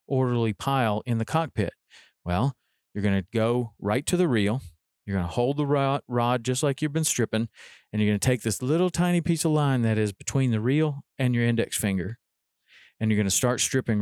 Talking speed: 220 wpm